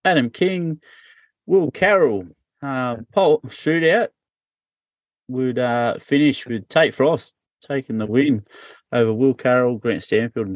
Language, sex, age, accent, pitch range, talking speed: English, male, 30-49, Australian, 110-135 Hz, 125 wpm